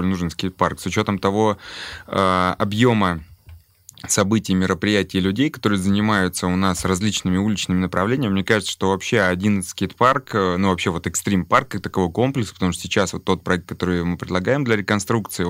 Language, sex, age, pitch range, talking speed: Russian, male, 20-39, 90-100 Hz, 160 wpm